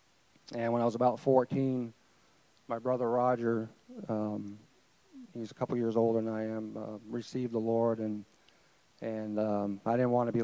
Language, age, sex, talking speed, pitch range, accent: English, 40-59, male, 170 wpm, 115-125 Hz, American